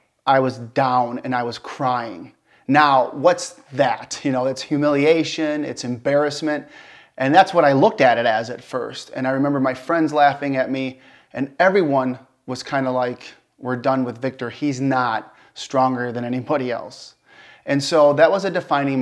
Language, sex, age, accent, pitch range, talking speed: English, male, 30-49, American, 125-145 Hz, 175 wpm